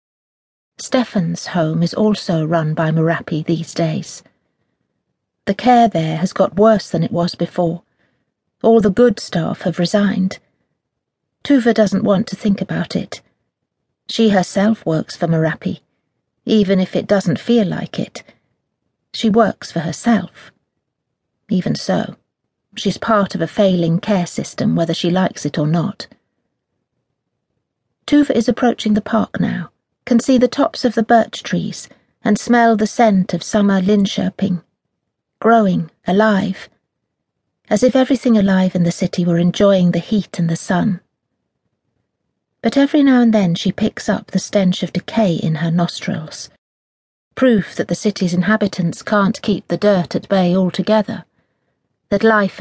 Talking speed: 145 wpm